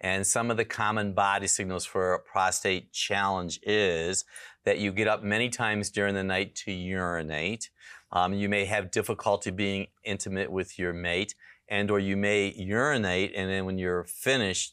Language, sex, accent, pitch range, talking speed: English, male, American, 90-105 Hz, 175 wpm